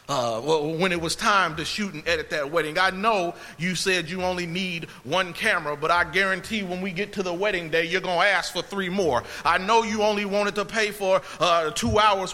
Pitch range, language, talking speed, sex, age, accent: 185-240 Hz, English, 230 wpm, male, 30-49, American